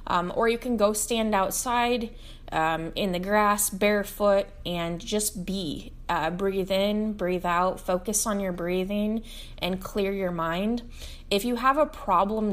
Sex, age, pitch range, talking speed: female, 20-39, 170-210 Hz, 160 wpm